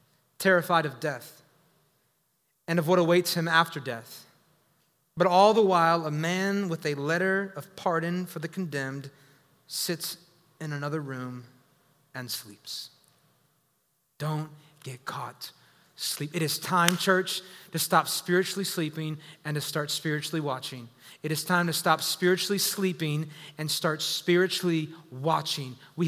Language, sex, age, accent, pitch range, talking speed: English, male, 30-49, American, 155-190 Hz, 135 wpm